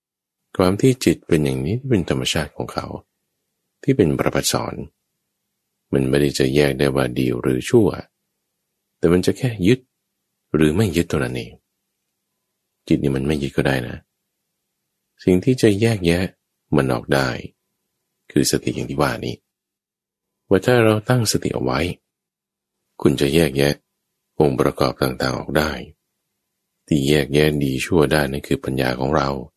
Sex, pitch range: male, 70-105 Hz